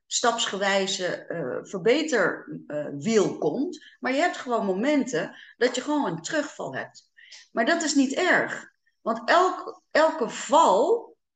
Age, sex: 30-49, female